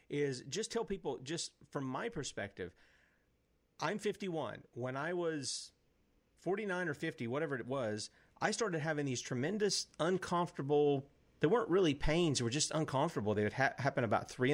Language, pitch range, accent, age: English, 120-160 Hz, American, 40-59